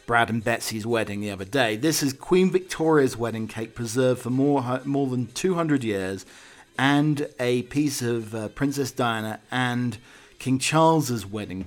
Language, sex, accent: English, male, British